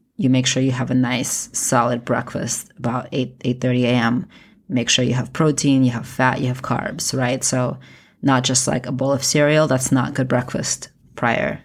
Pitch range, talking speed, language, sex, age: 125-140 Hz, 195 wpm, English, female, 20-39